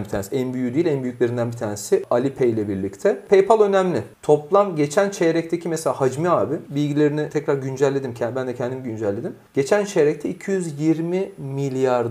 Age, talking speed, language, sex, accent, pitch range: 40-59, 160 wpm, Turkish, male, native, 125-185 Hz